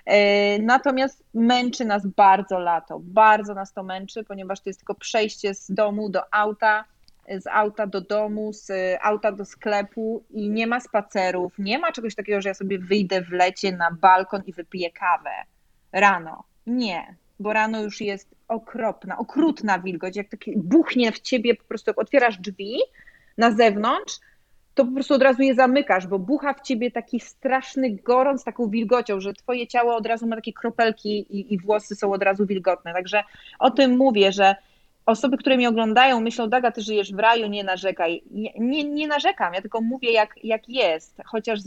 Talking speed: 180 wpm